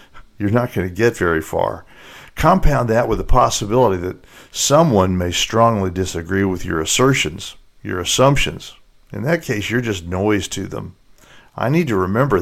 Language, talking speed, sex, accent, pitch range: English, 165 wpm, male, American, 95-120 Hz